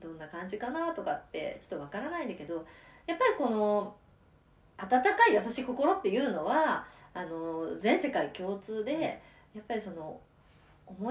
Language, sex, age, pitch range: Japanese, female, 20-39, 170-285 Hz